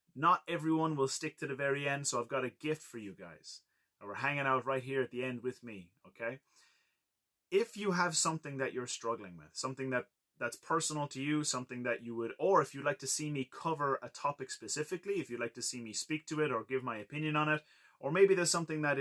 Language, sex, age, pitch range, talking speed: English, male, 30-49, 125-155 Hz, 240 wpm